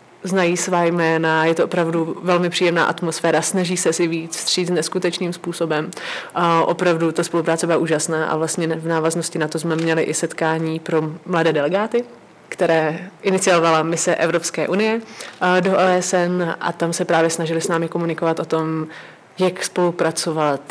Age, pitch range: 30-49, 165-180 Hz